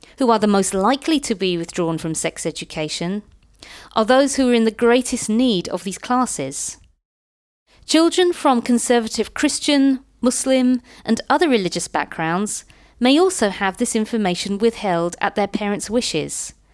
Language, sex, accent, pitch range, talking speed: English, female, British, 185-260 Hz, 145 wpm